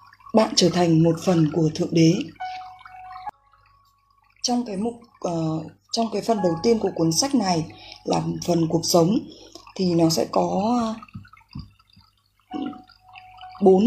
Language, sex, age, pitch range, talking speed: Vietnamese, female, 20-39, 180-275 Hz, 125 wpm